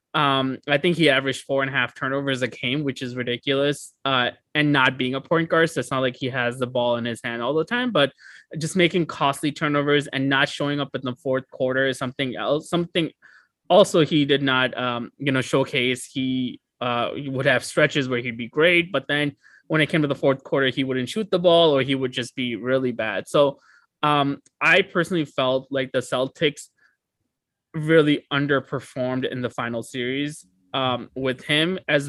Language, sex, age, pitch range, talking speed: English, male, 20-39, 130-145 Hz, 205 wpm